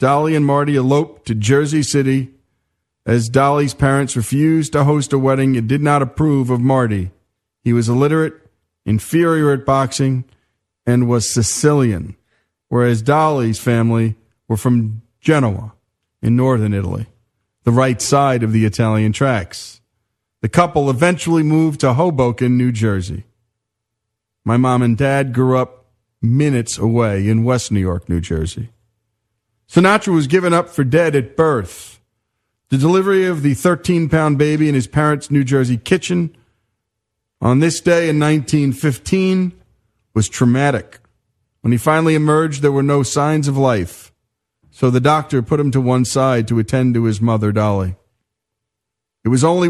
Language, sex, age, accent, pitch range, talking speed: English, male, 40-59, American, 110-145 Hz, 145 wpm